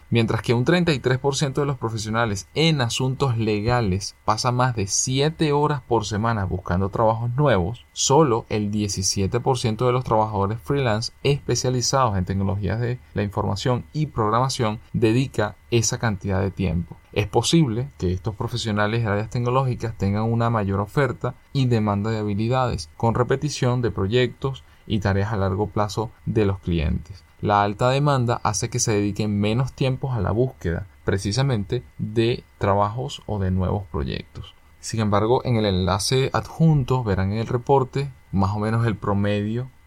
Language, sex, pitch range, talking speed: Spanish, male, 100-120 Hz, 155 wpm